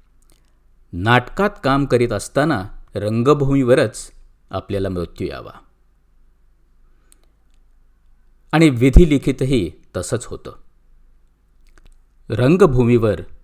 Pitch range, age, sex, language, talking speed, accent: 105-140 Hz, 50-69, male, Marathi, 60 wpm, native